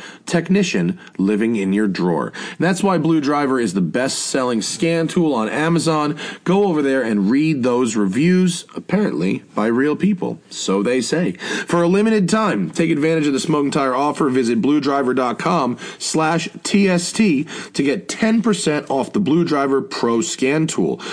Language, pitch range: English, 110-165 Hz